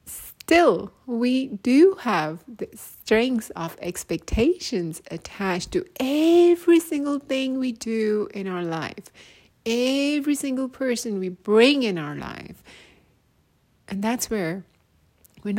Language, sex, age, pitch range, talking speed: English, female, 30-49, 145-220 Hz, 115 wpm